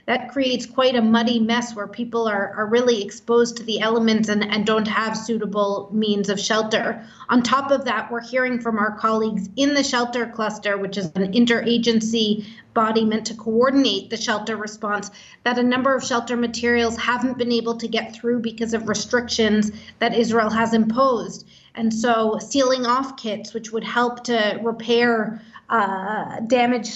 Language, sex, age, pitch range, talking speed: English, female, 30-49, 215-240 Hz, 175 wpm